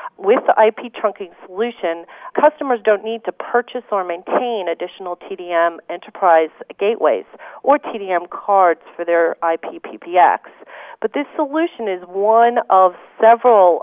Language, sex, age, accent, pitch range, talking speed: English, female, 40-59, American, 180-225 Hz, 130 wpm